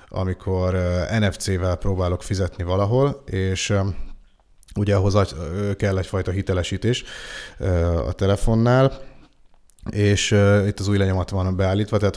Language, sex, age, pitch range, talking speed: Hungarian, male, 30-49, 90-100 Hz, 105 wpm